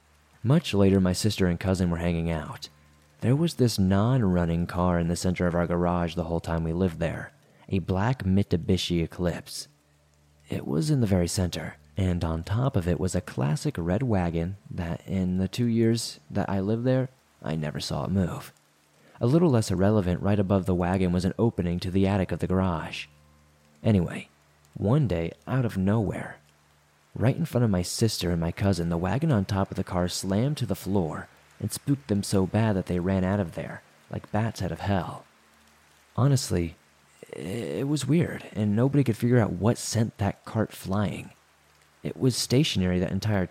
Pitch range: 85-110 Hz